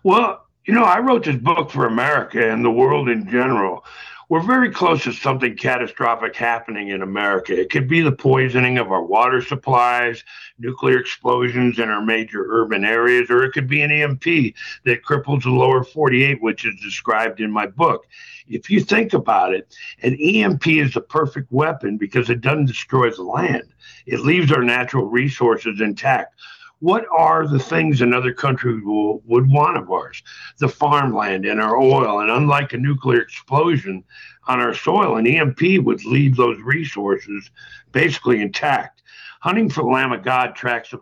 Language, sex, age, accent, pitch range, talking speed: English, male, 60-79, American, 115-150 Hz, 175 wpm